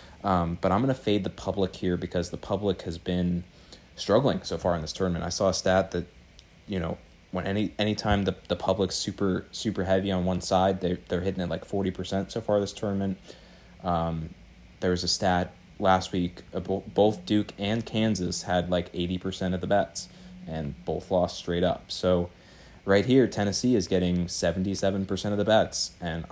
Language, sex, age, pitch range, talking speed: English, male, 20-39, 90-110 Hz, 190 wpm